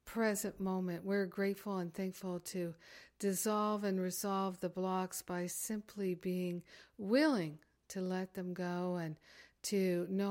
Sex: female